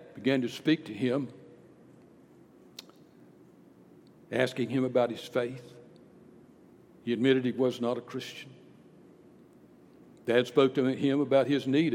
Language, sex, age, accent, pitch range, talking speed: English, male, 60-79, American, 125-155 Hz, 120 wpm